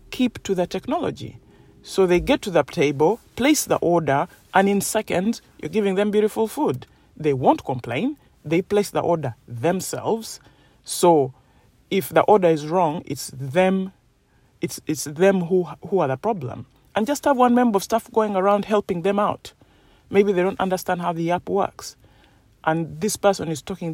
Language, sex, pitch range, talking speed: English, male, 140-185 Hz, 175 wpm